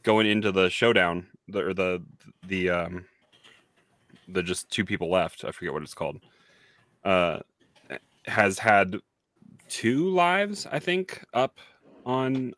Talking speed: 135 wpm